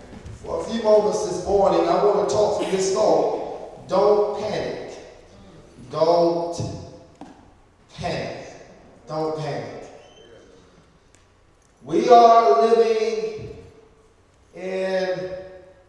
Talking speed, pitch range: 90 wpm, 145-230 Hz